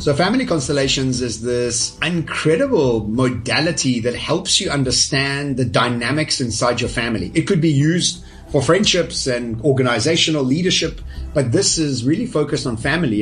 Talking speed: 145 wpm